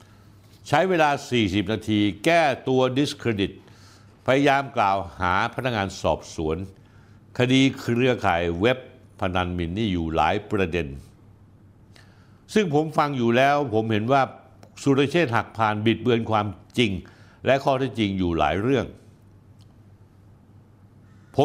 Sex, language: male, Thai